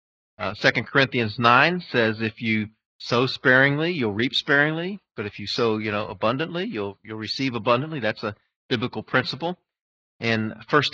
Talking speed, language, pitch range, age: 160 wpm, English, 115-150 Hz, 40-59